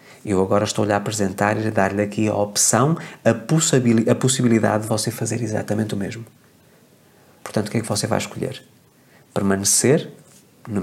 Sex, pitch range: male, 105-125 Hz